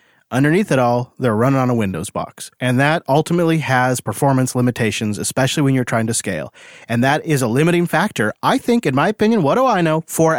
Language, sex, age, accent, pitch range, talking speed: English, male, 40-59, American, 125-175 Hz, 215 wpm